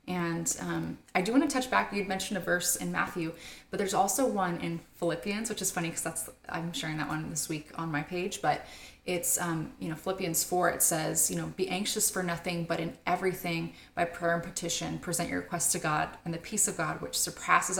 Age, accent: 20-39, American